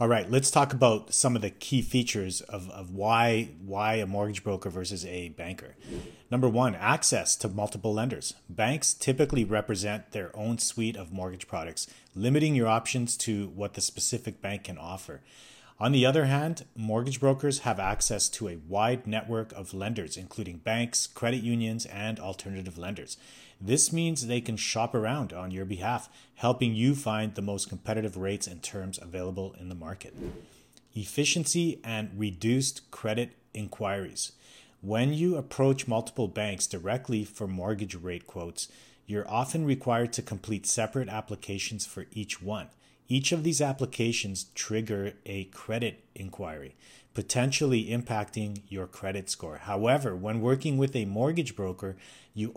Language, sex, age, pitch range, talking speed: English, male, 30-49, 100-125 Hz, 155 wpm